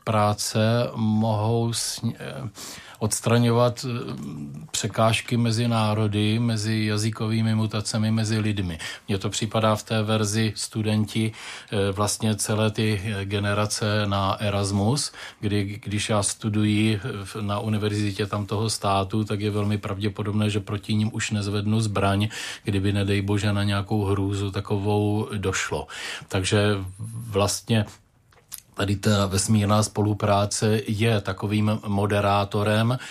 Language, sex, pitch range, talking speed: Czech, male, 100-110 Hz, 105 wpm